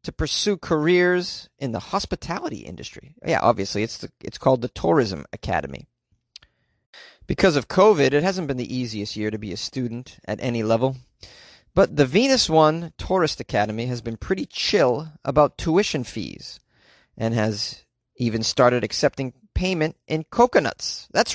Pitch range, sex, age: 120-155 Hz, male, 30-49